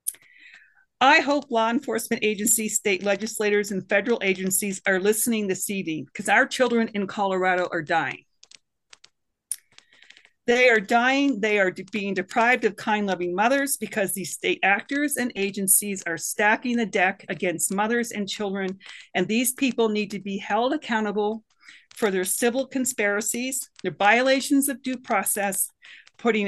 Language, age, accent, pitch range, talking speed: English, 40-59, American, 195-250 Hz, 145 wpm